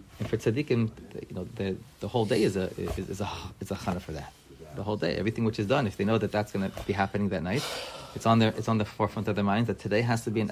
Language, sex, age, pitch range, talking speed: English, male, 30-49, 100-120 Hz, 300 wpm